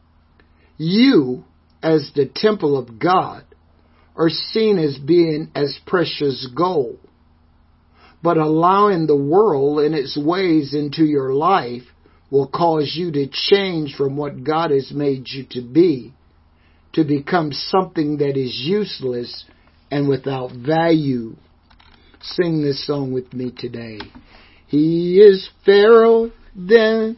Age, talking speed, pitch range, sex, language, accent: 60-79, 120 wpm, 130-195 Hz, male, English, American